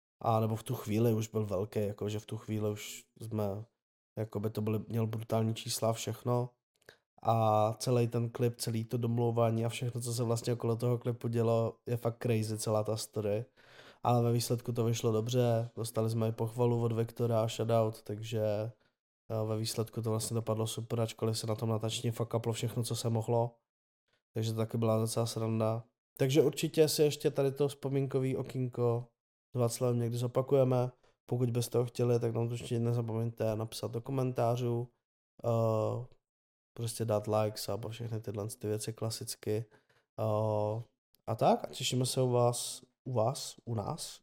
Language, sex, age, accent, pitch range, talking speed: Czech, male, 20-39, native, 110-125 Hz, 170 wpm